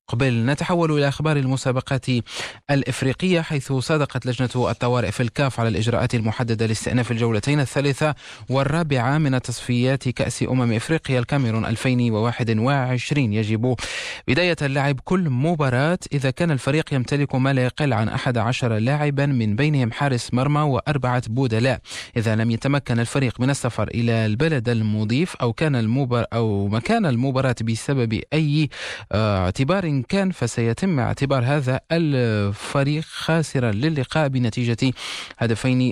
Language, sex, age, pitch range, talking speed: Arabic, male, 20-39, 115-140 Hz, 120 wpm